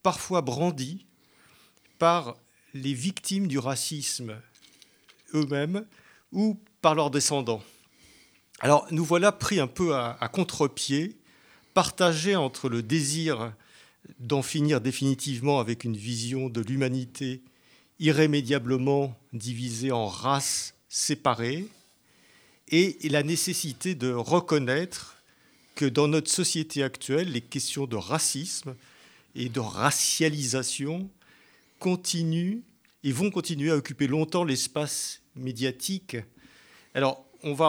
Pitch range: 125-165 Hz